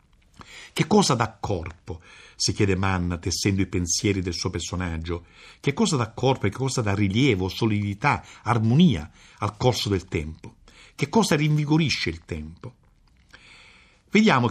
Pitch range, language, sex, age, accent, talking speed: 95-145 Hz, Italian, male, 60-79, native, 140 wpm